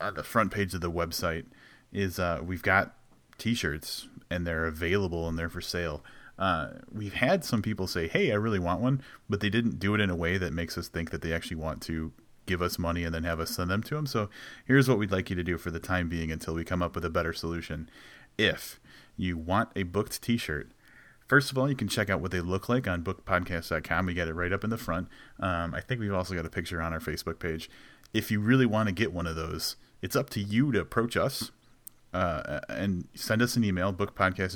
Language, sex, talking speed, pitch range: English, male, 245 wpm, 85-105 Hz